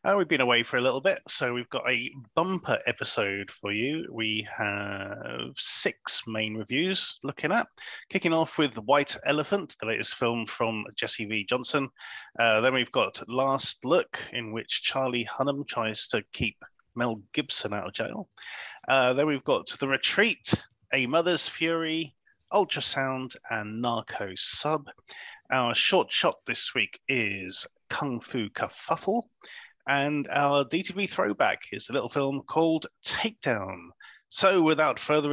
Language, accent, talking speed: English, British, 150 wpm